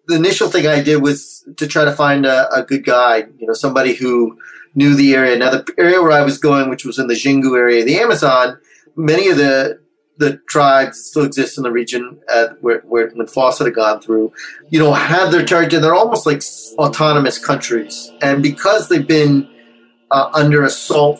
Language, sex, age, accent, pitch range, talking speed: English, male, 30-49, American, 125-155 Hz, 200 wpm